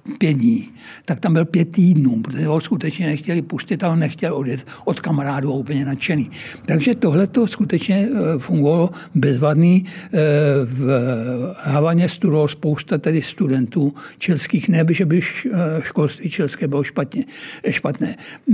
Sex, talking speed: male, 130 wpm